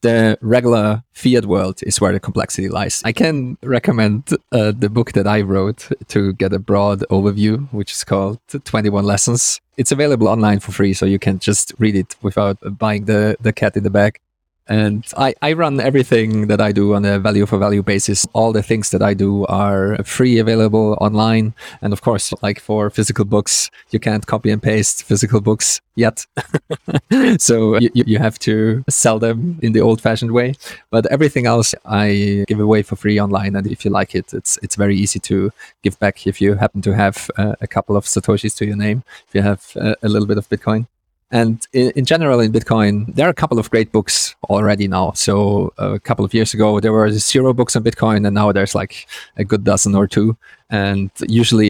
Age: 20-39